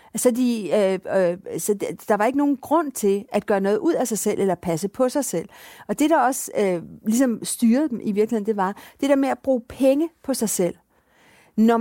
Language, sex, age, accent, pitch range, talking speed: Danish, female, 50-69, native, 205-265 Hz, 230 wpm